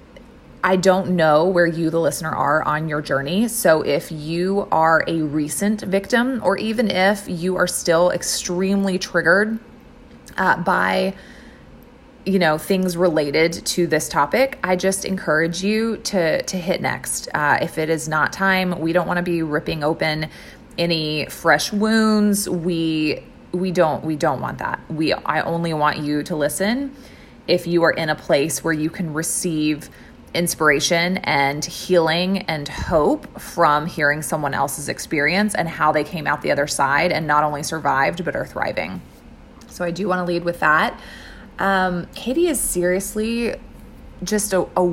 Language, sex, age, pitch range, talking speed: English, female, 20-39, 155-190 Hz, 165 wpm